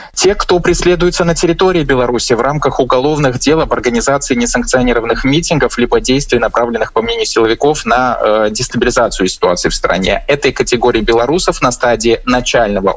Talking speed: 150 wpm